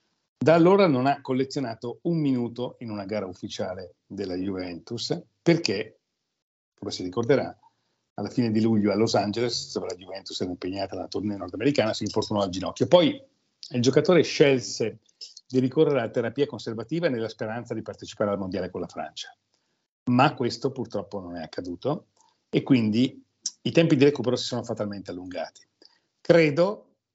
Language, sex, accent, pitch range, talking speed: Italian, male, native, 105-135 Hz, 155 wpm